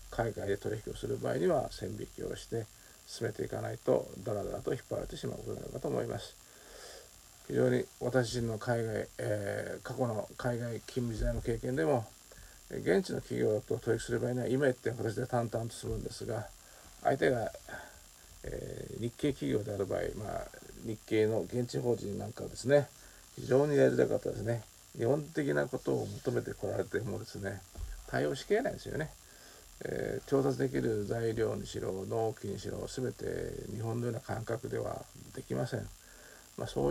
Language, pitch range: Japanese, 100-125 Hz